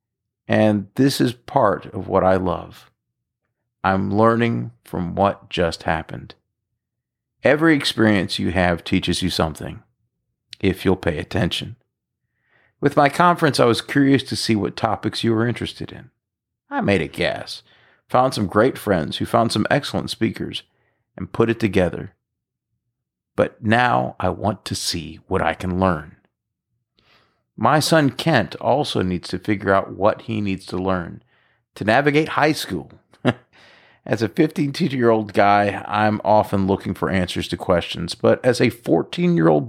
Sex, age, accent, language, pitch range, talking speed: male, 40-59, American, English, 95-125 Hz, 150 wpm